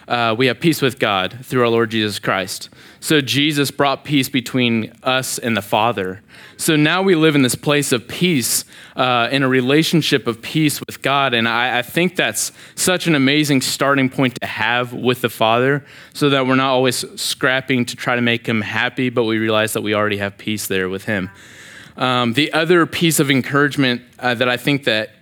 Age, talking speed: 20-39, 205 wpm